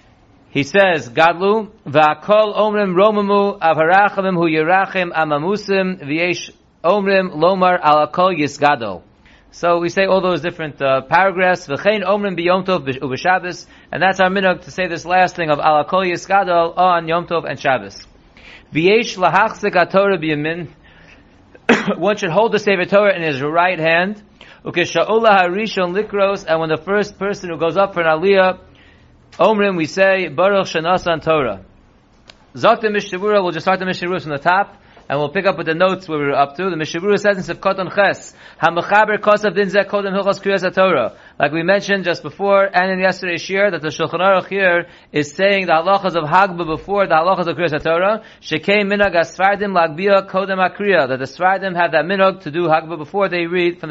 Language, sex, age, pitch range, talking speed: English, male, 40-59, 160-195 Hz, 175 wpm